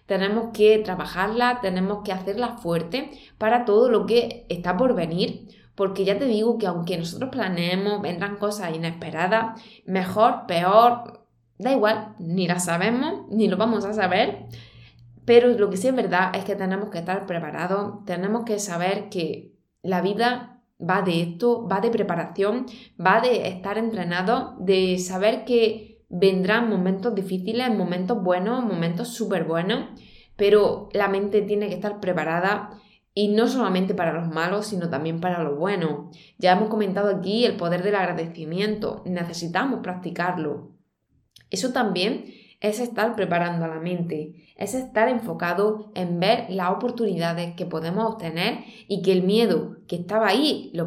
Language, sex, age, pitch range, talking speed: Spanish, female, 20-39, 180-225 Hz, 155 wpm